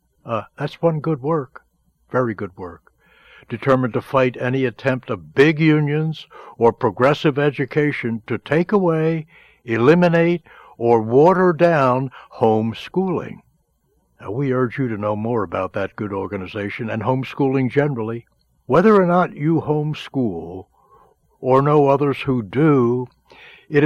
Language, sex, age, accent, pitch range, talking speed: English, male, 60-79, American, 115-155 Hz, 130 wpm